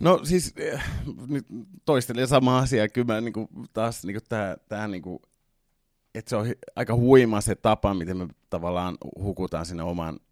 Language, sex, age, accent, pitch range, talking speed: Finnish, male, 30-49, native, 85-105 Hz, 175 wpm